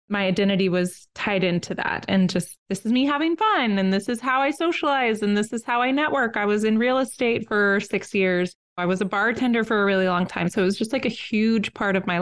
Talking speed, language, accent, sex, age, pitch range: 255 wpm, English, American, female, 20-39, 185-220 Hz